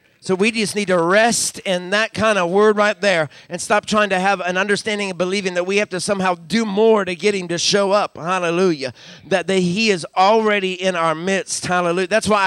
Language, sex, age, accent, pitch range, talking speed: English, male, 50-69, American, 185-225 Hz, 225 wpm